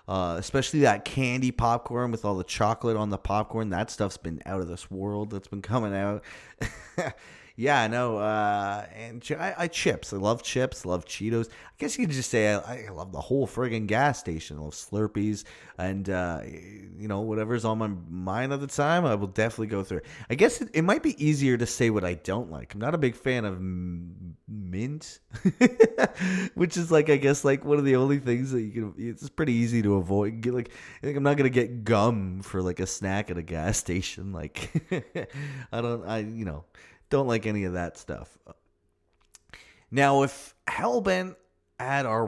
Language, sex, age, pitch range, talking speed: English, male, 30-49, 95-135 Hz, 205 wpm